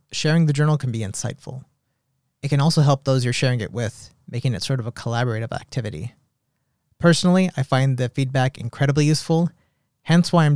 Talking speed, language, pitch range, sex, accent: 180 wpm, English, 125-155 Hz, male, American